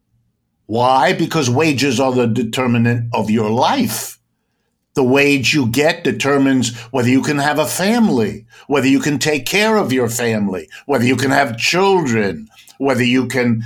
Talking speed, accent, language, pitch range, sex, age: 160 wpm, American, English, 125-175 Hz, male, 60-79